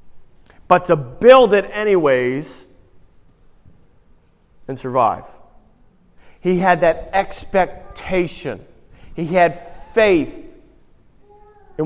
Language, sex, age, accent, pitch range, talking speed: English, male, 40-59, American, 140-185 Hz, 75 wpm